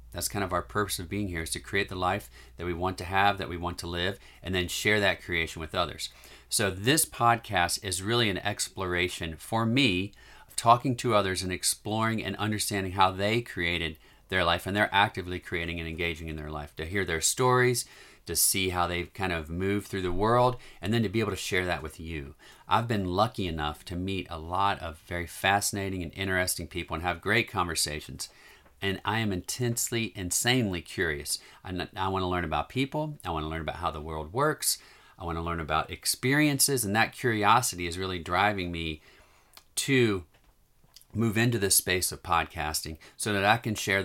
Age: 40-59